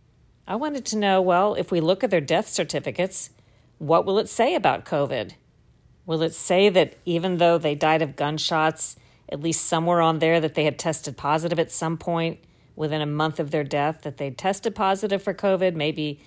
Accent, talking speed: American, 205 wpm